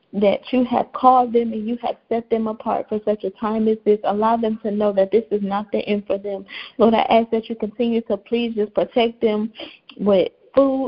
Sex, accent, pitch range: female, American, 200-230 Hz